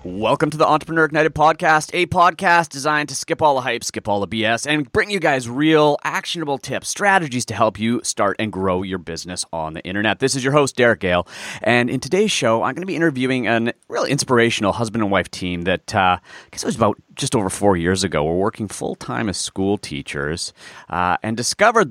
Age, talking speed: 30-49, 220 wpm